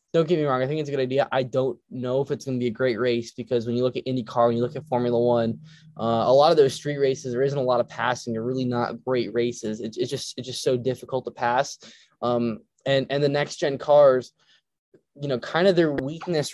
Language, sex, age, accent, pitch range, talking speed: English, male, 10-29, American, 120-145 Hz, 265 wpm